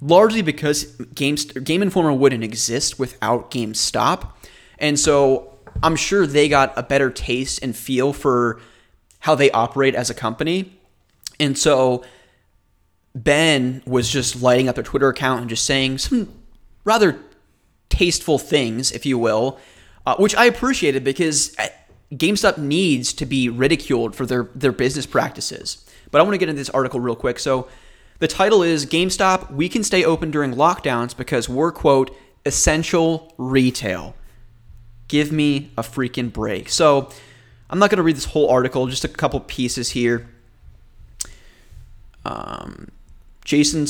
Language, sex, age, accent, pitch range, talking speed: English, male, 20-39, American, 125-160 Hz, 150 wpm